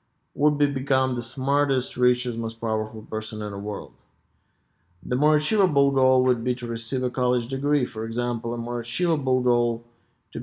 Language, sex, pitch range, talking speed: English, male, 110-130 Hz, 180 wpm